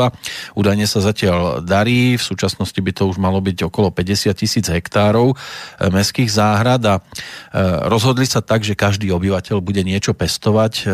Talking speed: 150 wpm